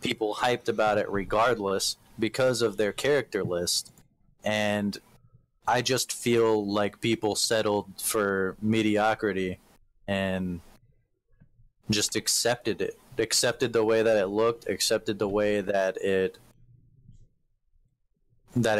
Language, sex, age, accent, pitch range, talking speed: English, male, 20-39, American, 105-120 Hz, 110 wpm